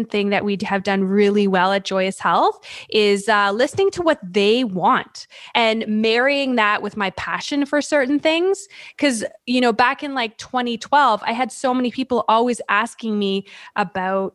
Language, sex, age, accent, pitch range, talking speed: English, female, 20-39, American, 205-270 Hz, 175 wpm